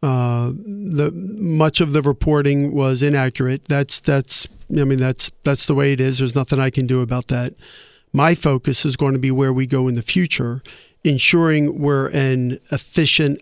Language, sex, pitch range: English, male, 130-150 Hz